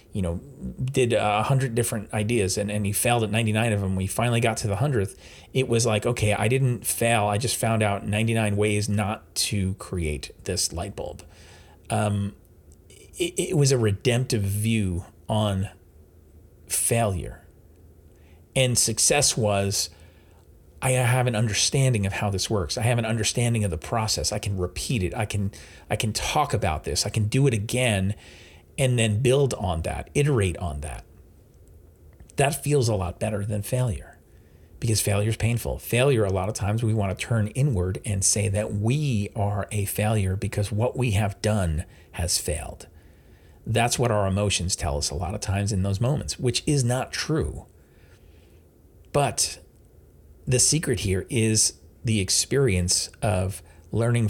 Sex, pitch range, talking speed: male, 90-115 Hz, 170 wpm